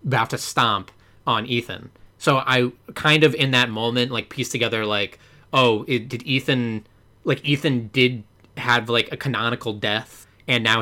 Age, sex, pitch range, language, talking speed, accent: 30-49, male, 110-140 Hz, English, 165 wpm, American